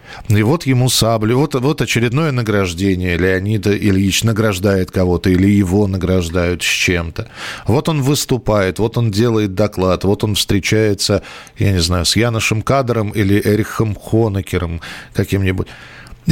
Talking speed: 135 wpm